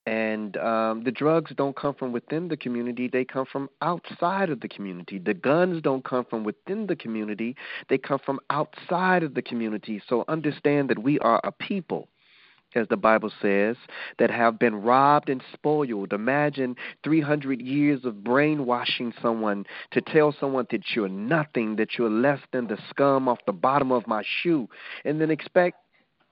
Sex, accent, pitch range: male, American, 125-175 Hz